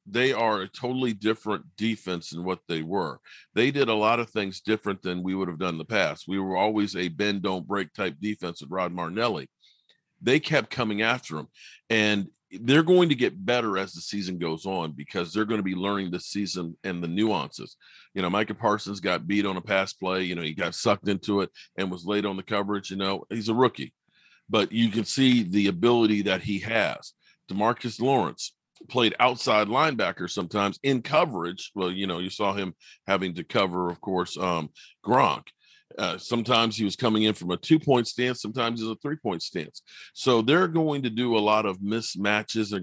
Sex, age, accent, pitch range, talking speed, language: male, 40-59, American, 95-115 Hz, 205 wpm, English